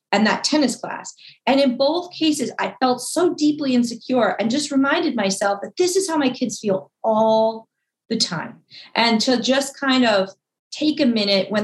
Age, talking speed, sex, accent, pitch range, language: 30-49, 185 wpm, female, American, 180-230 Hz, English